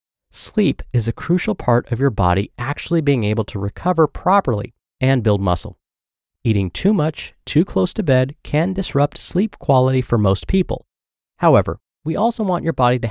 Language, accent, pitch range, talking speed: English, American, 100-150 Hz, 175 wpm